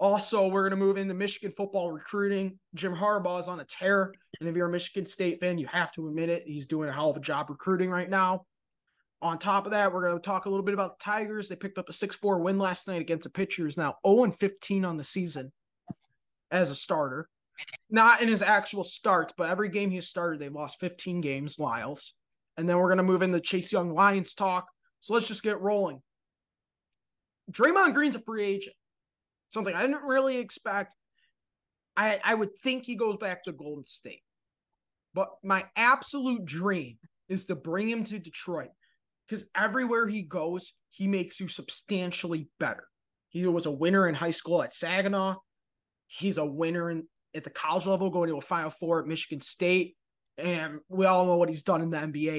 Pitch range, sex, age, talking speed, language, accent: 165-200 Hz, male, 20-39, 200 wpm, English, American